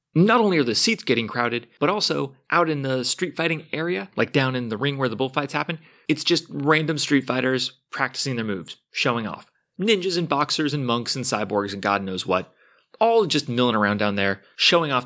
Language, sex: English, male